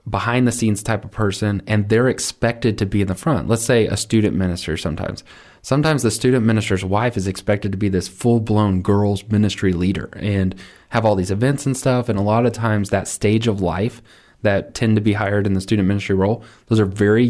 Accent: American